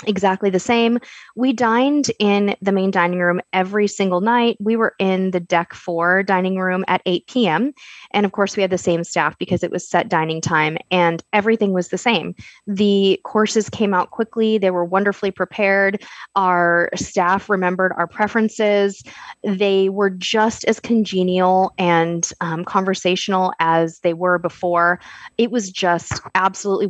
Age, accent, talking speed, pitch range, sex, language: 20-39, American, 165 wpm, 170-205 Hz, female, English